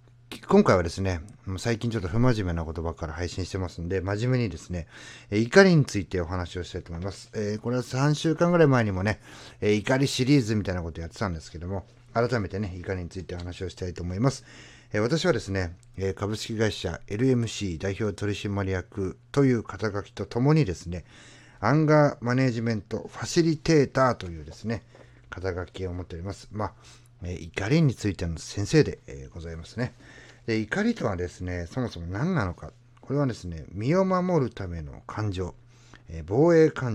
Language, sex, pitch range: Japanese, male, 90-125 Hz